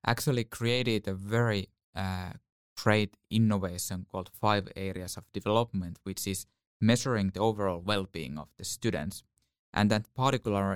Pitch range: 95-110 Hz